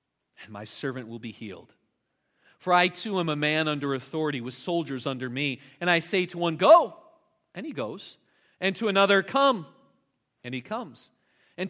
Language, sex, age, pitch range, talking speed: English, male, 40-59, 135-180 Hz, 180 wpm